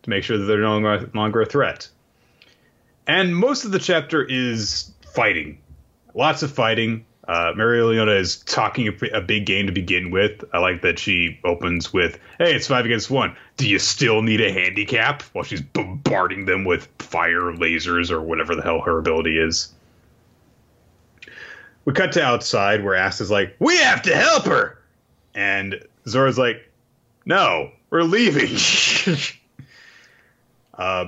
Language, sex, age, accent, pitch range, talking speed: English, male, 30-49, American, 90-125 Hz, 160 wpm